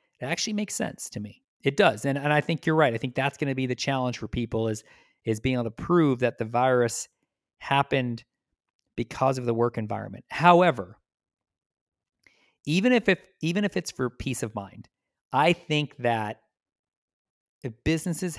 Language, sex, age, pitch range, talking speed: English, male, 50-69, 115-140 Hz, 180 wpm